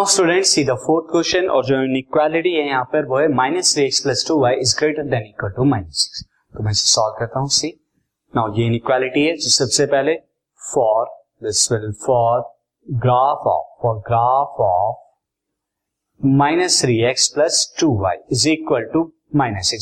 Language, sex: Hindi, male